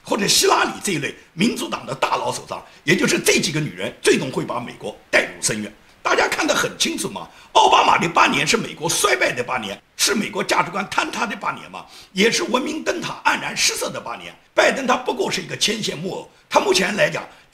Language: Chinese